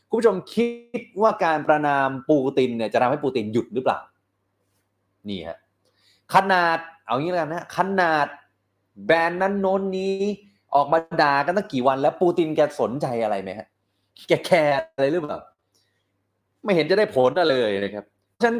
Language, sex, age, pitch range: Thai, male, 30-49, 105-170 Hz